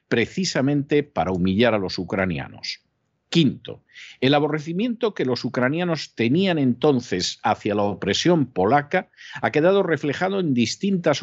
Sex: male